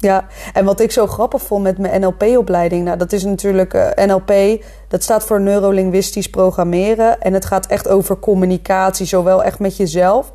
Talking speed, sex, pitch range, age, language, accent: 180 wpm, female, 195-240 Hz, 20-39, Dutch, Dutch